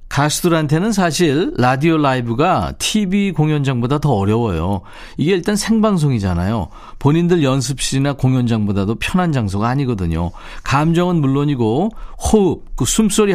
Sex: male